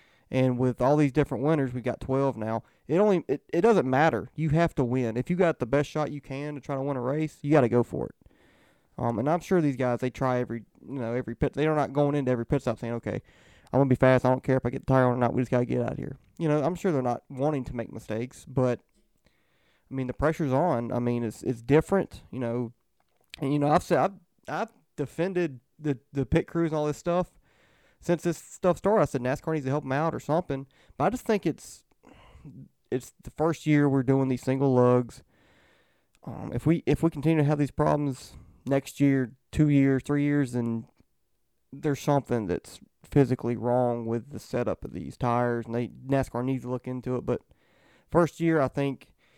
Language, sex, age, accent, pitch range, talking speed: English, male, 20-39, American, 125-150 Hz, 235 wpm